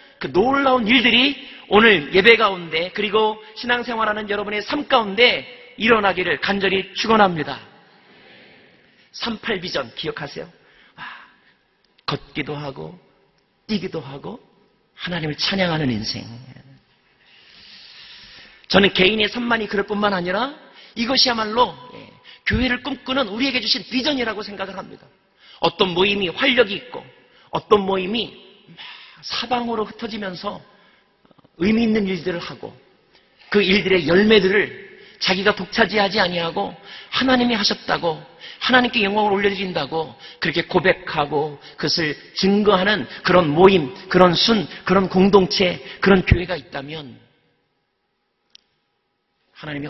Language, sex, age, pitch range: Korean, male, 40-59, 180-230 Hz